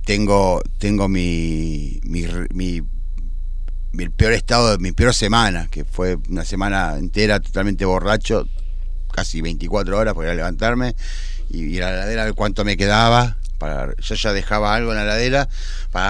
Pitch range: 65-105 Hz